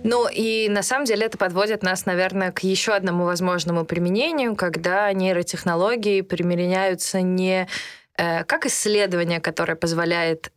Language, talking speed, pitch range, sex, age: Russian, 130 wpm, 175-215 Hz, female, 20-39